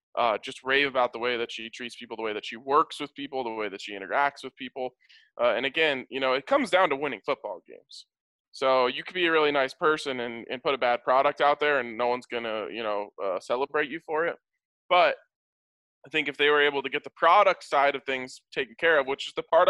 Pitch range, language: 120-150 Hz, English